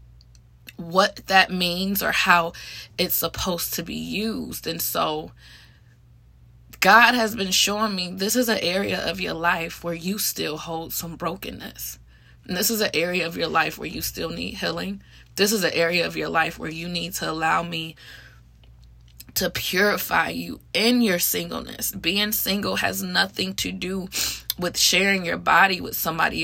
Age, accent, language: 20-39, American, English